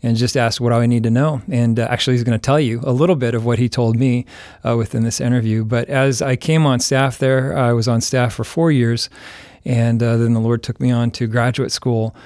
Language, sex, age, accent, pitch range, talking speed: English, male, 40-59, American, 120-135 Hz, 260 wpm